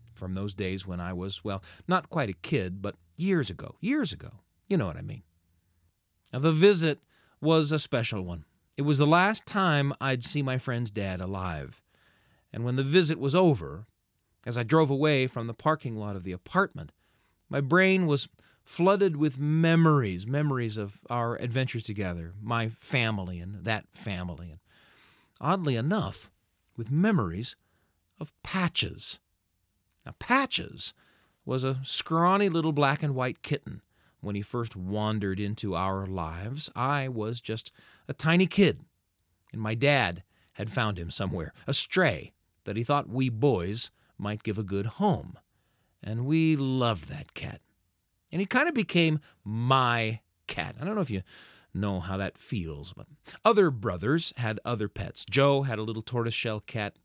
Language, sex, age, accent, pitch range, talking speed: English, male, 40-59, American, 95-145 Hz, 160 wpm